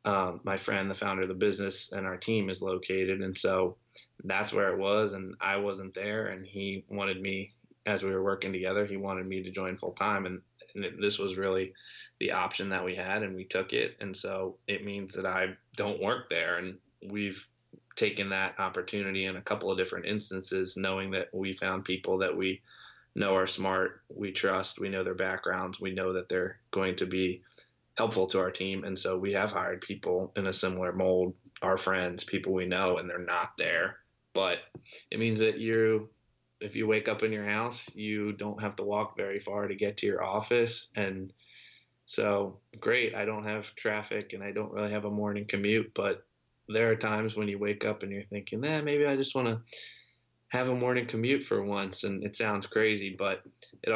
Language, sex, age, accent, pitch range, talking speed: English, male, 20-39, American, 95-105 Hz, 210 wpm